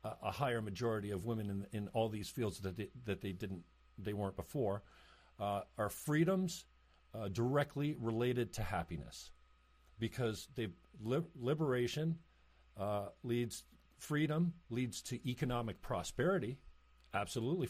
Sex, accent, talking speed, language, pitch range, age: male, American, 130 wpm, English, 100-150 Hz, 50-69